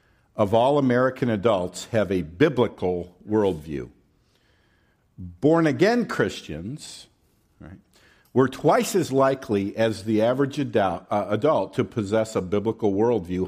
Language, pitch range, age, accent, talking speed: English, 100-150 Hz, 50-69, American, 110 wpm